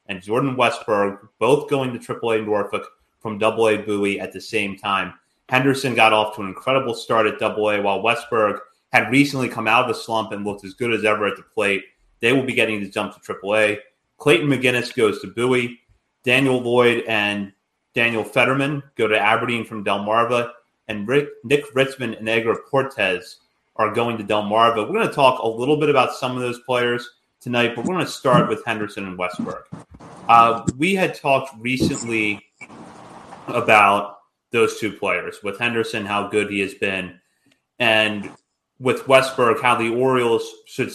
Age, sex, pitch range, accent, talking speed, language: 30-49, male, 105-125 Hz, American, 175 wpm, English